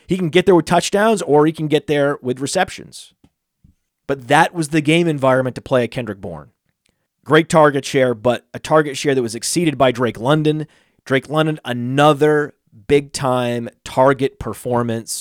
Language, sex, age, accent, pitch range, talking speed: English, male, 30-49, American, 130-170 Hz, 170 wpm